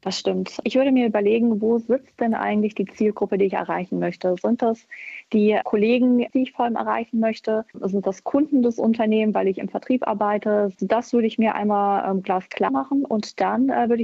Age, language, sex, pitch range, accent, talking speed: 20-39, German, female, 200-230 Hz, German, 195 wpm